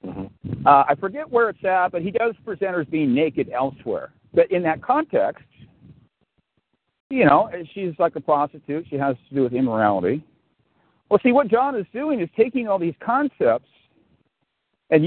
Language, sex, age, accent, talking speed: English, male, 50-69, American, 165 wpm